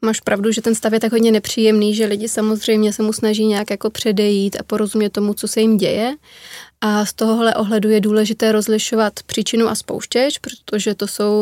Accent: native